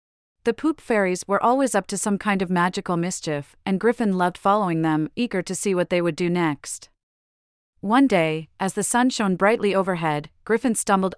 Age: 30-49